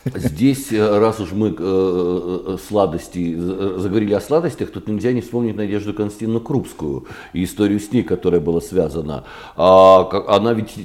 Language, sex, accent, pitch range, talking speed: Russian, male, native, 100-130 Hz, 150 wpm